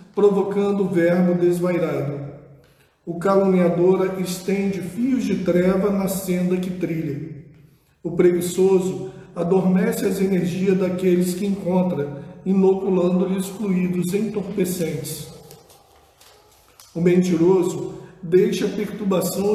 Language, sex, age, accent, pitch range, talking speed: Portuguese, male, 40-59, Brazilian, 175-200 Hz, 90 wpm